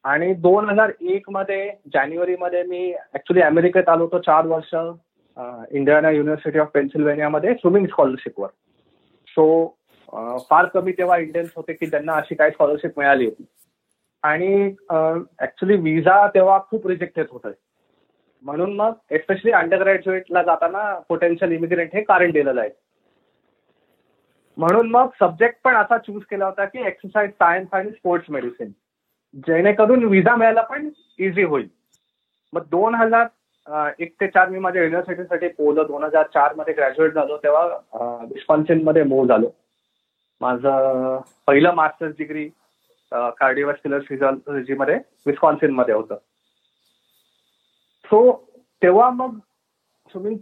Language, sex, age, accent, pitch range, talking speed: Marathi, male, 20-39, native, 150-195 Hz, 125 wpm